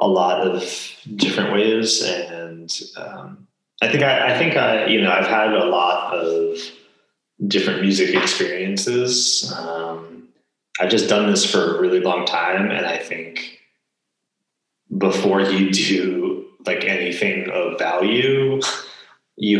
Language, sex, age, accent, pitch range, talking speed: English, male, 20-39, American, 90-120 Hz, 135 wpm